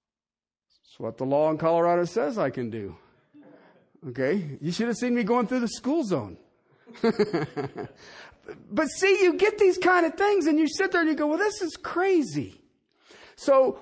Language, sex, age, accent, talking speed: English, male, 50-69, American, 175 wpm